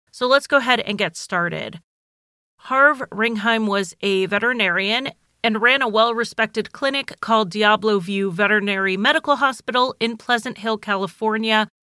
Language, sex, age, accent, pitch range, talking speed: English, female, 30-49, American, 195-235 Hz, 135 wpm